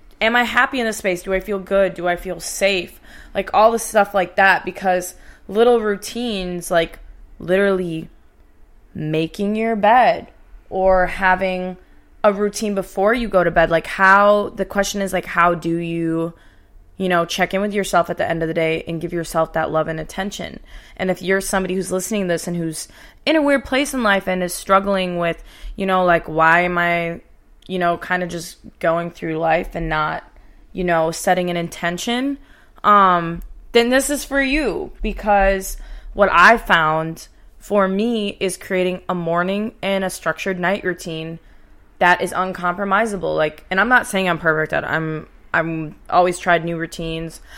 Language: English